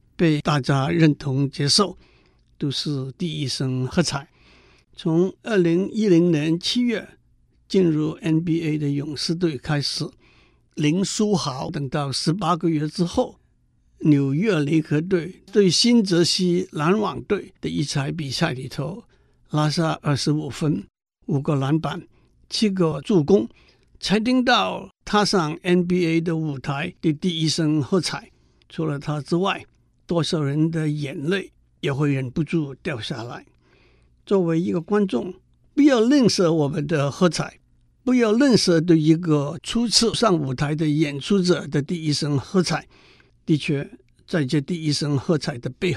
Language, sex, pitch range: Chinese, male, 145-180 Hz